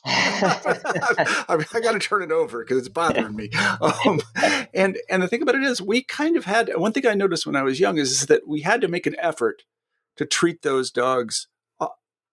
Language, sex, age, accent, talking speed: English, male, 50-69, American, 220 wpm